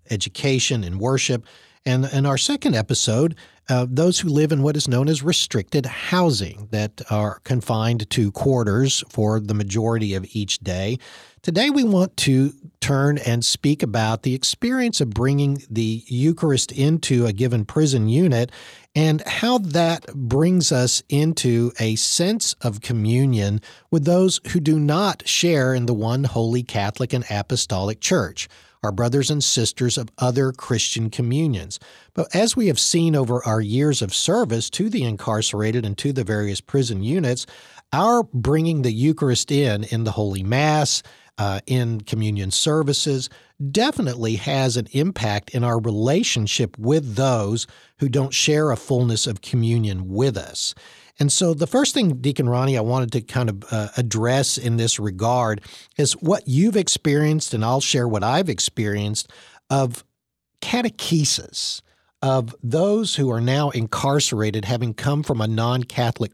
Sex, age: male, 50-69